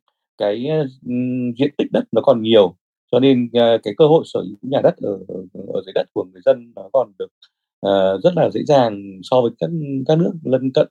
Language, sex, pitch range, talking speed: Vietnamese, male, 95-130 Hz, 220 wpm